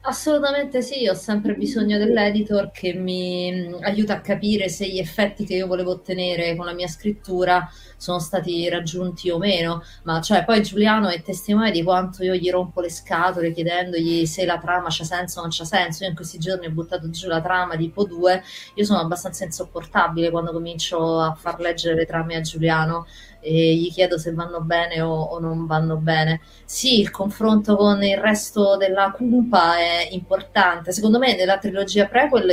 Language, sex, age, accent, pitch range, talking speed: Italian, female, 30-49, native, 165-200 Hz, 185 wpm